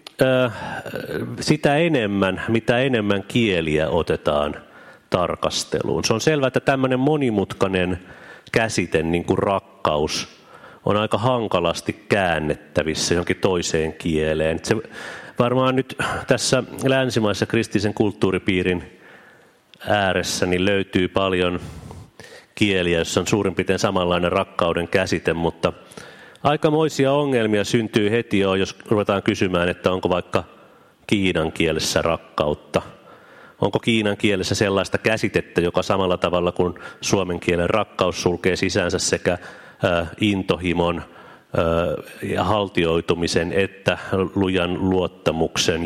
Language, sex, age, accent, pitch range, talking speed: Finnish, male, 30-49, native, 85-110 Hz, 100 wpm